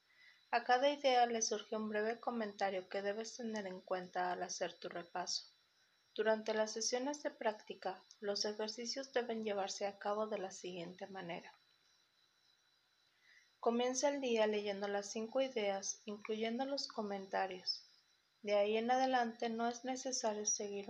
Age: 30-49